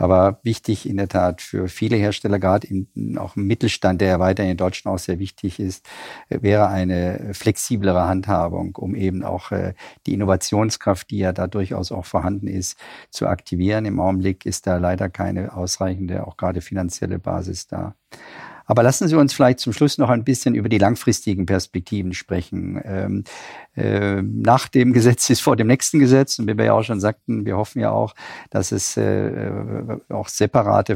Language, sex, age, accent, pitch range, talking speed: German, male, 50-69, German, 95-110 Hz, 175 wpm